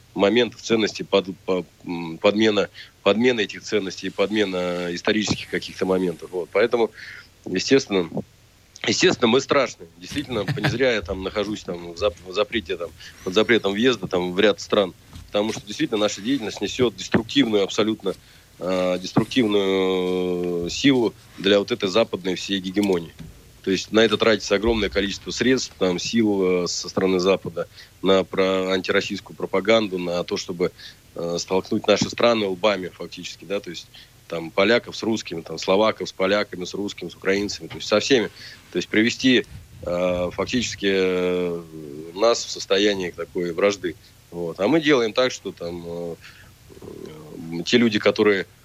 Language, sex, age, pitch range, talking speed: Slovak, male, 30-49, 90-105 Hz, 155 wpm